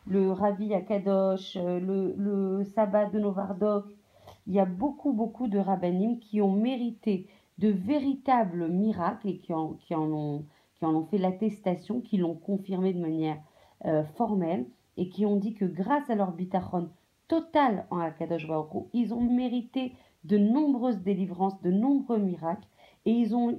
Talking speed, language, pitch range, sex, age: 165 wpm, French, 180-235 Hz, female, 40-59